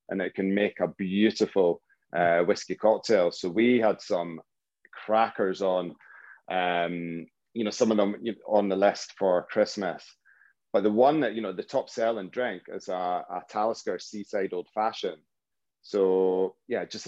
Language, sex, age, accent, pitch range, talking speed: English, male, 30-49, British, 90-110 Hz, 160 wpm